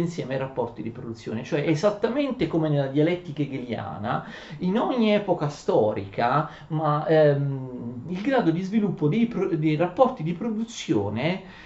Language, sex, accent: Italian, male, native